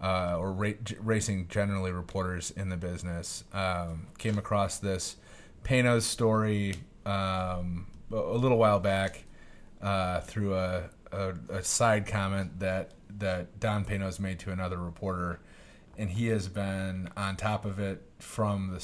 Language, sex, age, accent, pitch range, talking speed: English, male, 30-49, American, 95-110 Hz, 135 wpm